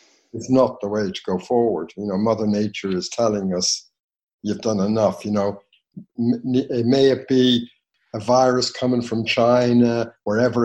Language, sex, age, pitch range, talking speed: English, male, 60-79, 105-125 Hz, 160 wpm